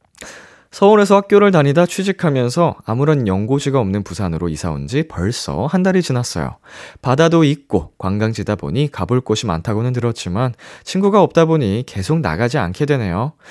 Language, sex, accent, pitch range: Korean, male, native, 105-165 Hz